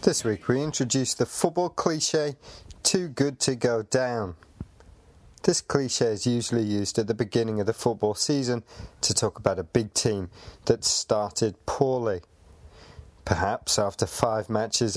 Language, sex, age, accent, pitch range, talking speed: English, male, 30-49, British, 95-125 Hz, 150 wpm